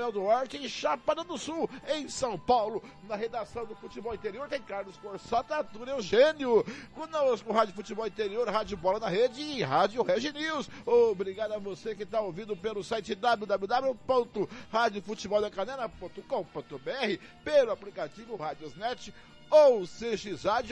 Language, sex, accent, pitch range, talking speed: Portuguese, male, Brazilian, 220-270 Hz, 130 wpm